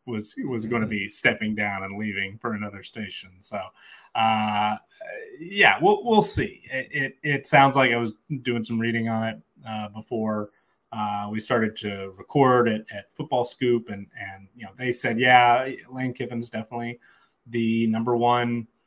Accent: American